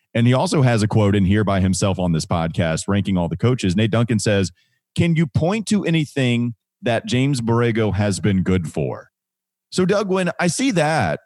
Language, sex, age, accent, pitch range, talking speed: English, male, 30-49, American, 95-130 Hz, 205 wpm